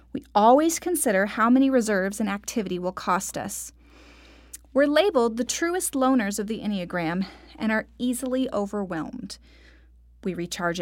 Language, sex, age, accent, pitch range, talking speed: English, female, 30-49, American, 190-255 Hz, 140 wpm